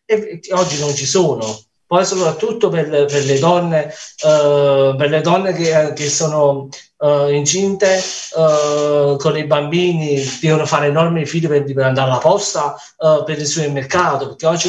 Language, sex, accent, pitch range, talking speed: Italian, male, native, 145-175 Hz, 165 wpm